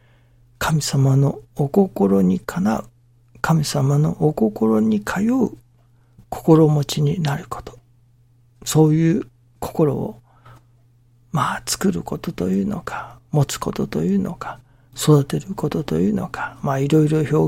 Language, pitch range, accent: Japanese, 120-150 Hz, native